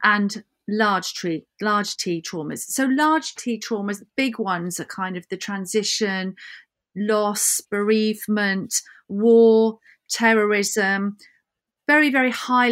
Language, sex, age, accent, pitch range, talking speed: English, female, 40-59, British, 210-245 Hz, 115 wpm